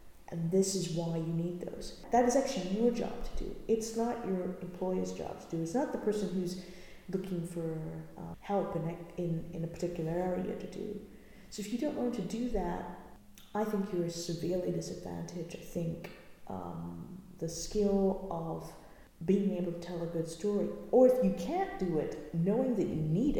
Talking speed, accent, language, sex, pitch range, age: 190 wpm, American, English, female, 160-195 Hz, 40-59